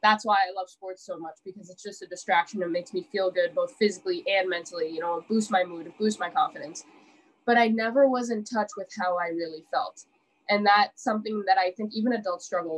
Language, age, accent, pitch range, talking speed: English, 20-39, American, 180-255 Hz, 230 wpm